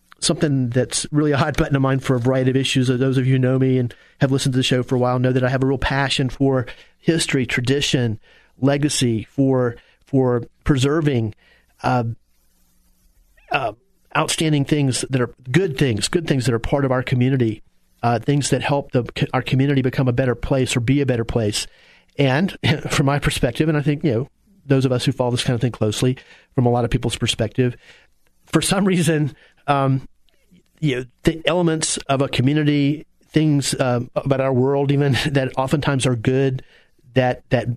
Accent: American